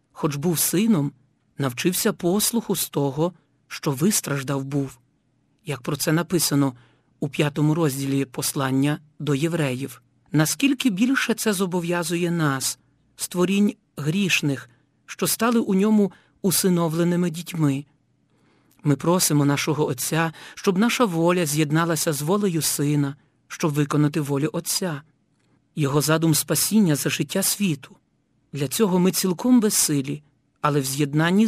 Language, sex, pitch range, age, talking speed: Ukrainian, male, 145-180 Hz, 50-69, 120 wpm